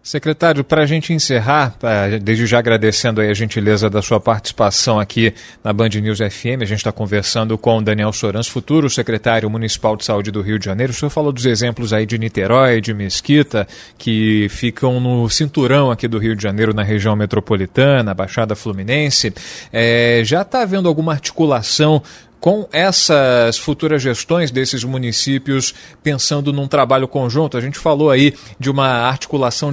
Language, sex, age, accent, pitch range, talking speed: Portuguese, male, 40-59, Brazilian, 115-150 Hz, 170 wpm